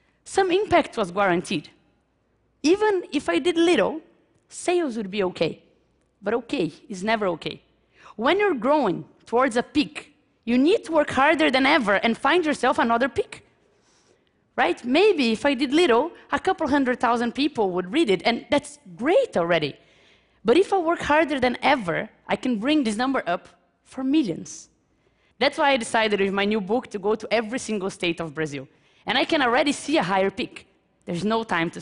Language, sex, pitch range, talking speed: Russian, female, 230-330 Hz, 185 wpm